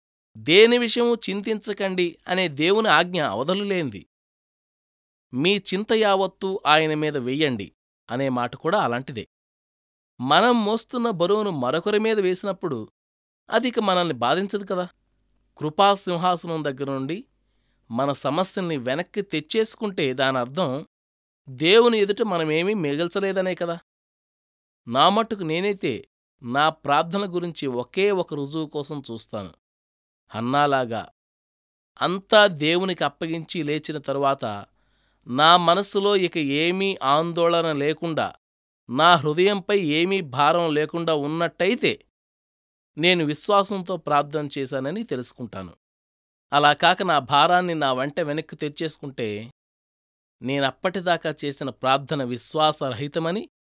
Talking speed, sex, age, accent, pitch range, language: 95 wpm, male, 20-39, native, 130-190 Hz, Telugu